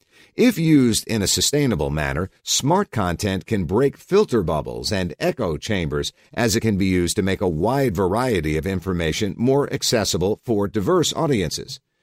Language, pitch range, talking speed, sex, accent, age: English, 90-135 Hz, 160 wpm, male, American, 50-69